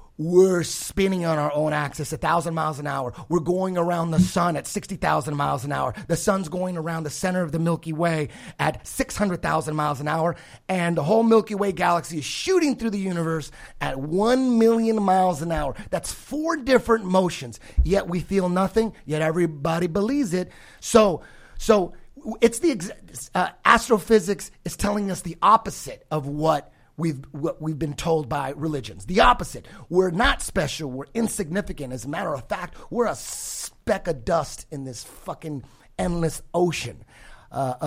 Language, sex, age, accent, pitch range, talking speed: English, male, 30-49, American, 150-200 Hz, 175 wpm